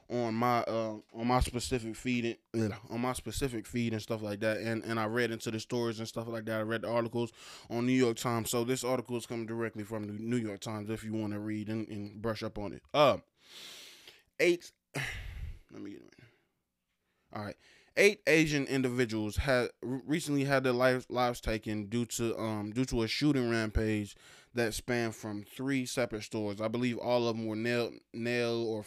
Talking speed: 205 wpm